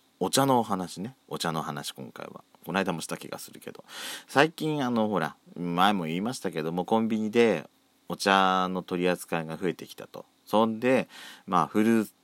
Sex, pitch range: male, 85-120 Hz